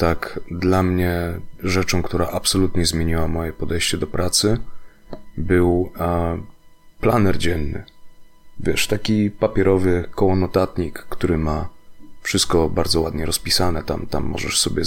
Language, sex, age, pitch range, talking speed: Polish, male, 30-49, 85-105 Hz, 120 wpm